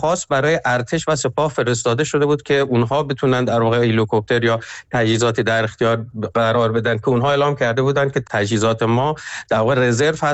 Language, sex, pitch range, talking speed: Persian, male, 110-135 Hz, 175 wpm